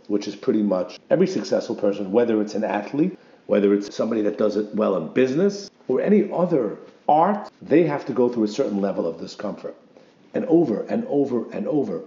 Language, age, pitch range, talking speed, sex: English, 50-69, 105-155 Hz, 200 wpm, male